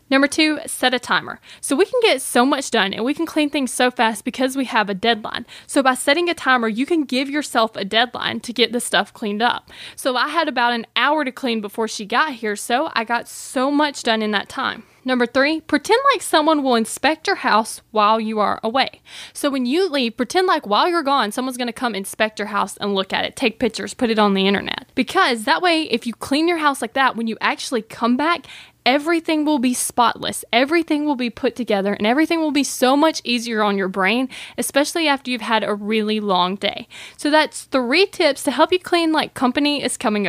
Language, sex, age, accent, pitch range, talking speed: English, female, 10-29, American, 225-295 Hz, 230 wpm